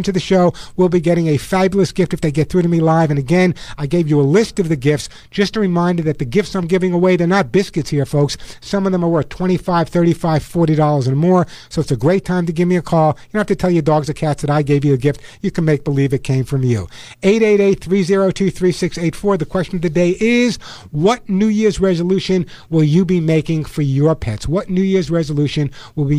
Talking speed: 245 wpm